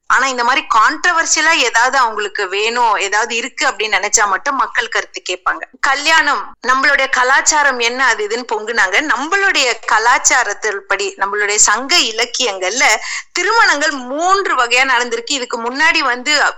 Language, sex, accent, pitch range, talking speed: Tamil, female, native, 240-360 Hz, 125 wpm